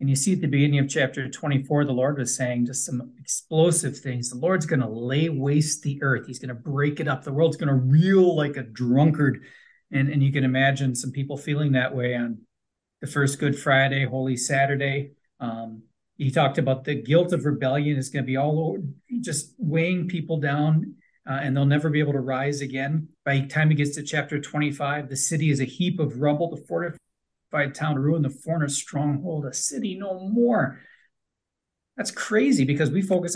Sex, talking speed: male, 205 wpm